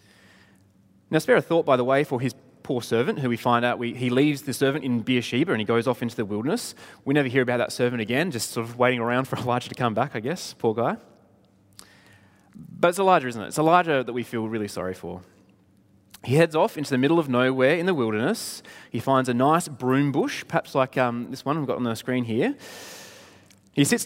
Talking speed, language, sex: 230 wpm, English, male